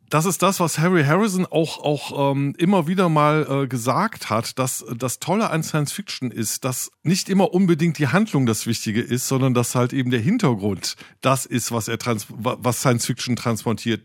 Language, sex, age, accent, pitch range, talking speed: German, male, 50-69, German, 115-145 Hz, 185 wpm